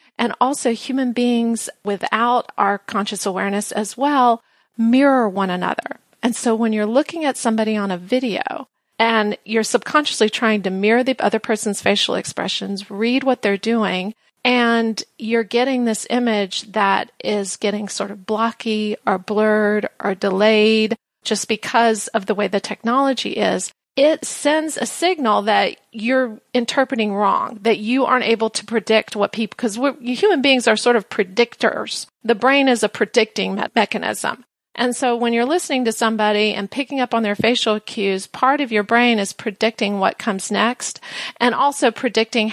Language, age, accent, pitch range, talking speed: English, 40-59, American, 210-250 Hz, 165 wpm